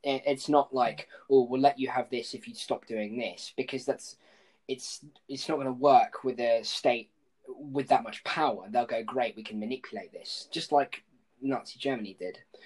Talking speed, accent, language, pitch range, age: 195 wpm, British, English, 115-140 Hz, 10-29